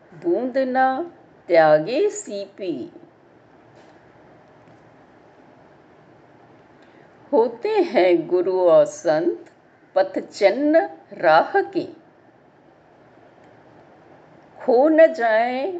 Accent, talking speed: native, 55 wpm